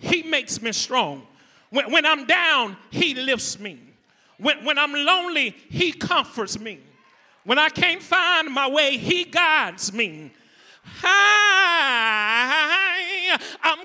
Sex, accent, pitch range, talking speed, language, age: male, American, 255-345 Hz, 120 wpm, English, 40-59